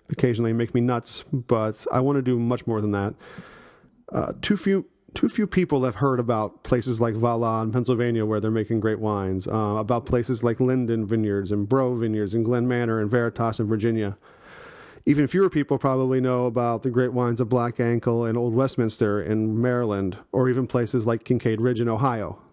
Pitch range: 110-130 Hz